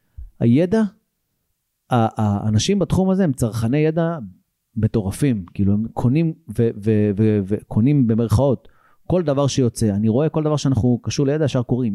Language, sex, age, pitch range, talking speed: Hebrew, male, 30-49, 110-165 Hz, 140 wpm